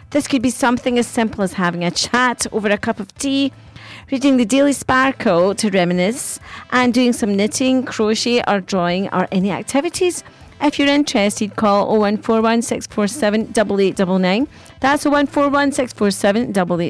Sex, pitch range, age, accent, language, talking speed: female, 190-270 Hz, 40-59, British, English, 130 wpm